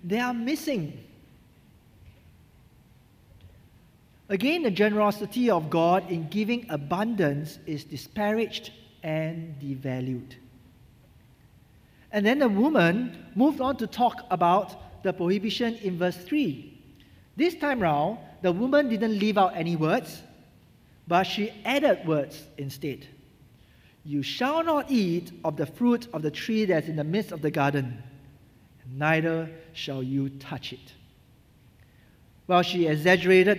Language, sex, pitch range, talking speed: English, male, 145-210 Hz, 125 wpm